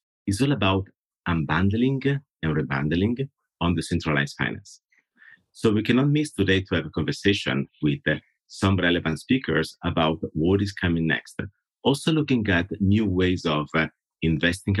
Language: English